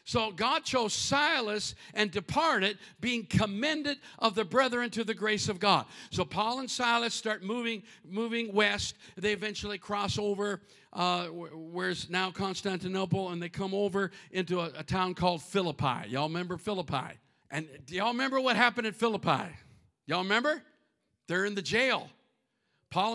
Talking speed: 155 wpm